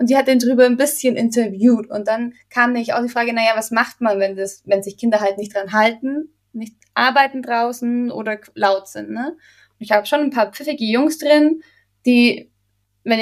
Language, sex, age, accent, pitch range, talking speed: German, female, 20-39, German, 210-260 Hz, 210 wpm